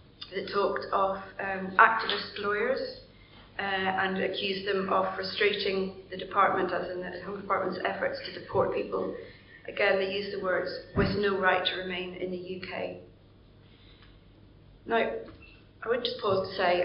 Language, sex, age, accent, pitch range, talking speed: English, female, 30-49, British, 175-195 Hz, 155 wpm